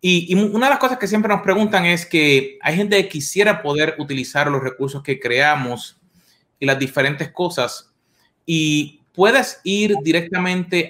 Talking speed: 165 wpm